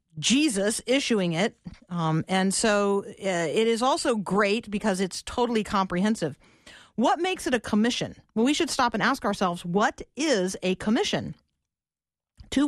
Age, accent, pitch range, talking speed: 40-59, American, 185-255 Hz, 150 wpm